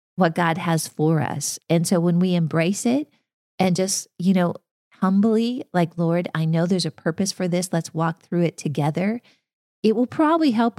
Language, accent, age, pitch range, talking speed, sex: English, American, 40-59, 155-185 Hz, 190 wpm, female